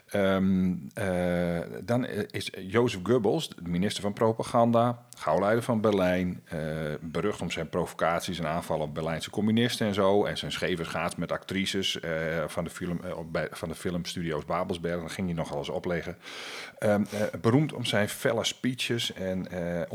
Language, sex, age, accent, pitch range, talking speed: Dutch, male, 40-59, Dutch, 85-110 Hz, 145 wpm